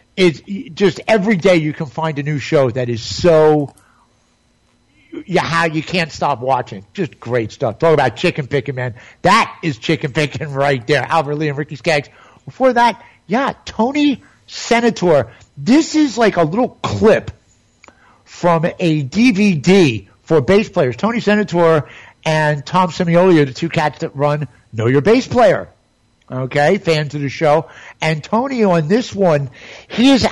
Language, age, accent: English, 50-69, American